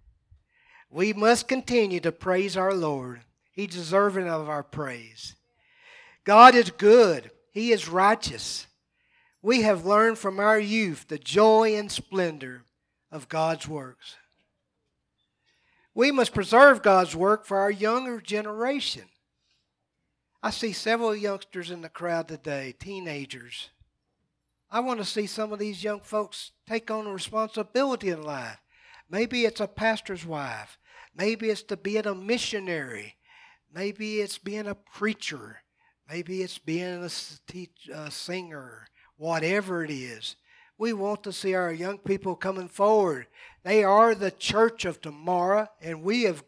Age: 50-69